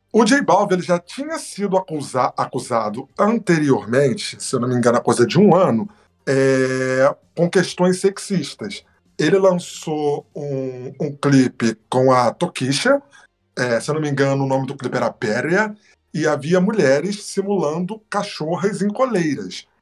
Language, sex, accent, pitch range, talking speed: Portuguese, male, Brazilian, 135-185 Hz, 150 wpm